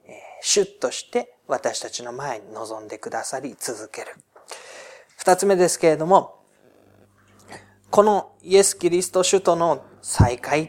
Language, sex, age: Japanese, male, 40-59